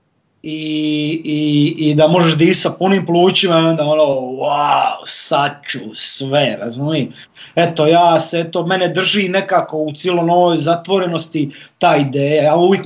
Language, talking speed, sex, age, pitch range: Croatian, 140 wpm, male, 30-49, 150-180 Hz